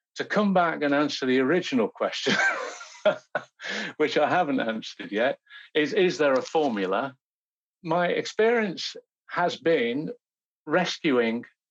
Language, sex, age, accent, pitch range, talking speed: English, male, 50-69, British, 130-185 Hz, 120 wpm